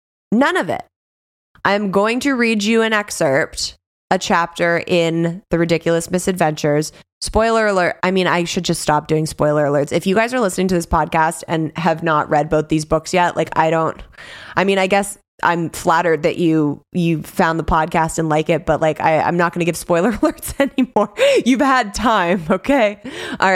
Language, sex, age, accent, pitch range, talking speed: English, female, 20-39, American, 155-185 Hz, 195 wpm